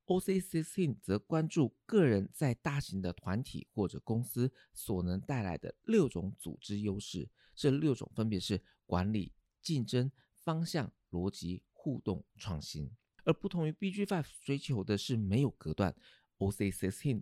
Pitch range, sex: 95-155 Hz, male